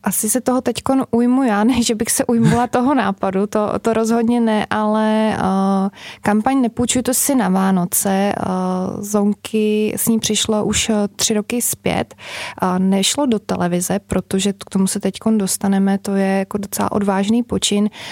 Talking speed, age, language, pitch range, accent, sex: 165 wpm, 20-39, Czech, 195-215 Hz, native, female